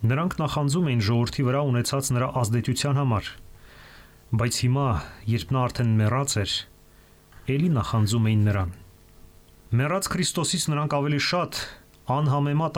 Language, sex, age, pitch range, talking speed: English, male, 30-49, 105-145 Hz, 115 wpm